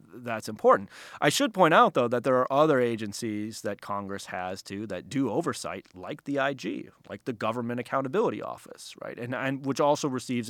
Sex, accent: male, American